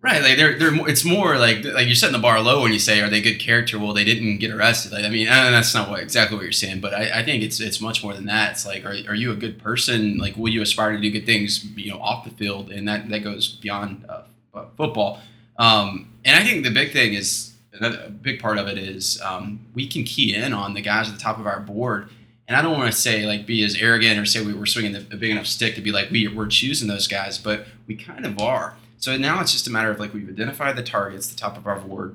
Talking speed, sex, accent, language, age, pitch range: 280 wpm, male, American, English, 20-39, 105-115 Hz